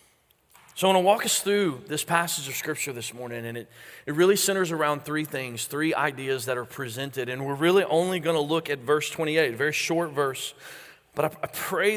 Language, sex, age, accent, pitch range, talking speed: English, male, 30-49, American, 140-190 Hz, 220 wpm